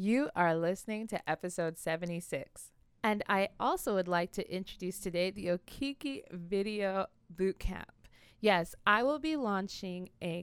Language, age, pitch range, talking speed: English, 20-39, 180-230 Hz, 140 wpm